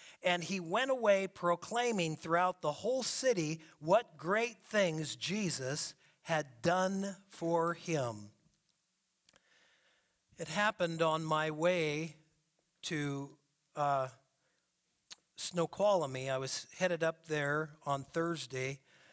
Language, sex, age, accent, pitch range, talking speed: English, male, 50-69, American, 150-180 Hz, 100 wpm